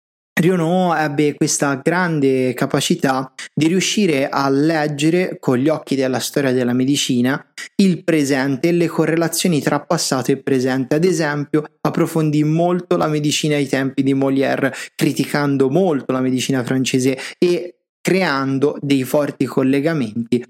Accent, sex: native, male